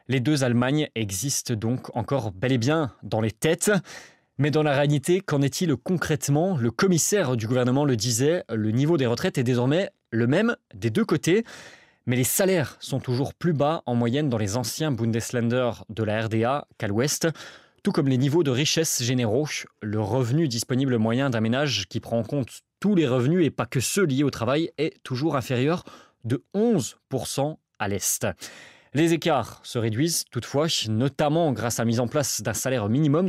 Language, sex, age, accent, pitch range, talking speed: French, male, 20-39, French, 120-155 Hz, 185 wpm